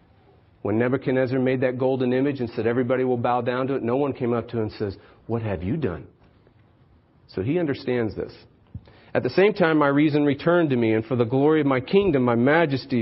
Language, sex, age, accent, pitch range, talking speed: English, male, 40-59, American, 105-135 Hz, 220 wpm